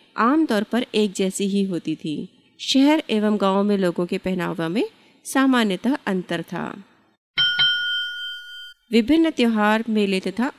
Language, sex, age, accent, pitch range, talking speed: Hindi, female, 30-49, native, 195-270 Hz, 130 wpm